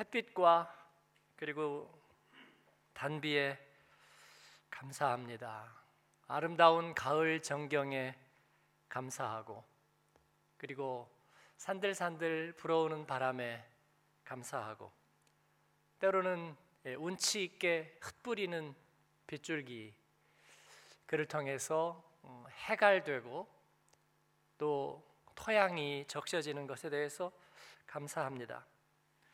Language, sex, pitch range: Korean, male, 140-190 Hz